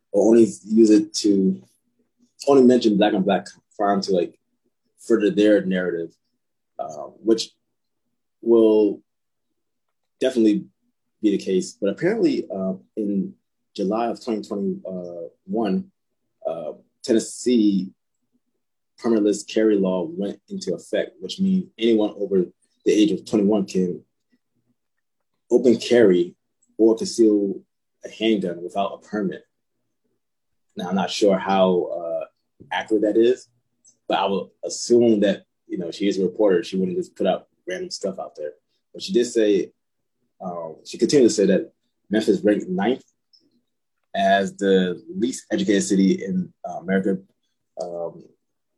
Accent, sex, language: American, male, English